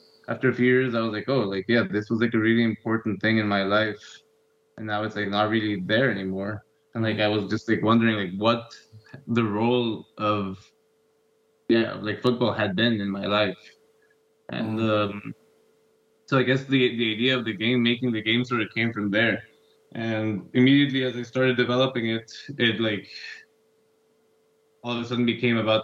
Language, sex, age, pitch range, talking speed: English, male, 20-39, 105-120 Hz, 190 wpm